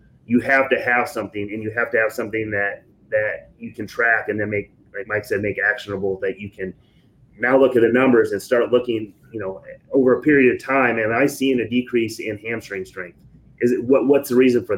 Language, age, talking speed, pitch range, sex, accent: English, 30-49, 235 wpm, 110-130 Hz, male, American